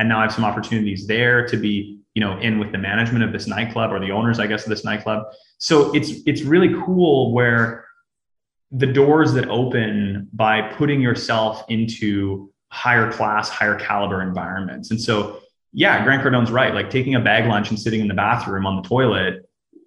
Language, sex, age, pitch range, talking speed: English, male, 20-39, 105-135 Hz, 195 wpm